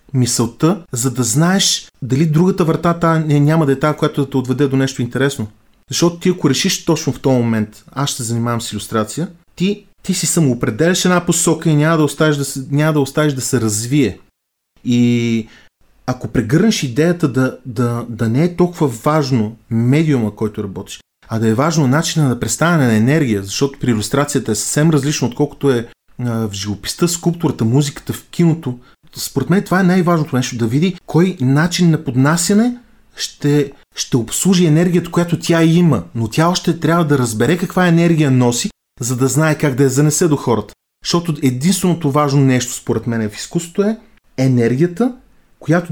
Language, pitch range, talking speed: Bulgarian, 125-165 Hz, 175 wpm